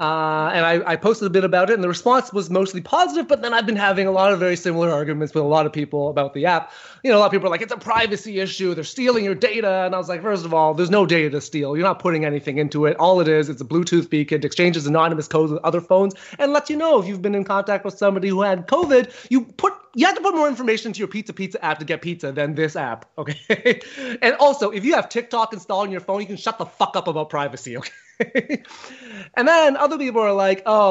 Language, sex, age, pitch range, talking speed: English, male, 30-49, 170-230 Hz, 275 wpm